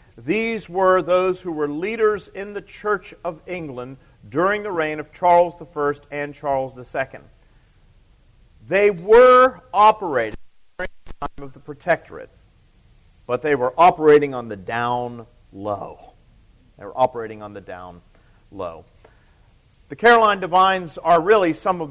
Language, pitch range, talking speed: English, 120-180 Hz, 140 wpm